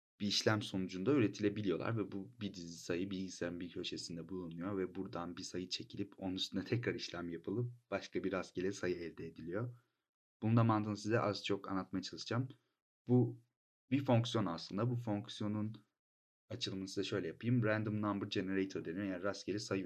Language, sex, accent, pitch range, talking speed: Turkish, male, native, 90-115 Hz, 165 wpm